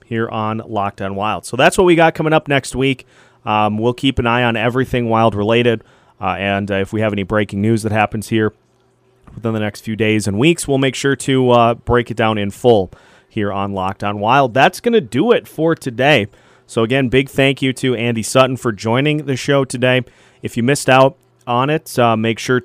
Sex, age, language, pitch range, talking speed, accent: male, 30-49, English, 110-135 Hz, 225 wpm, American